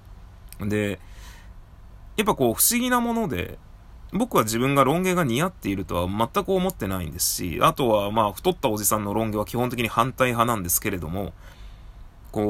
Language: Japanese